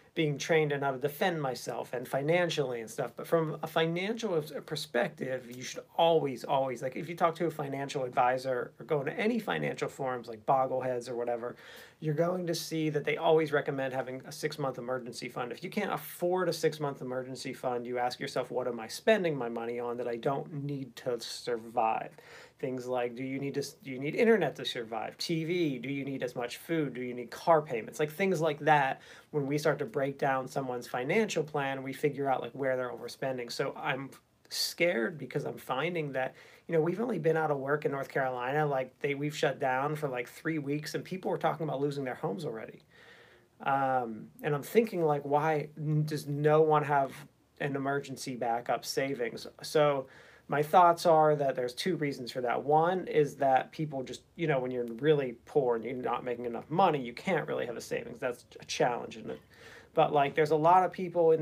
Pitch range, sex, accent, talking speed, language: 130-160 Hz, male, American, 210 wpm, English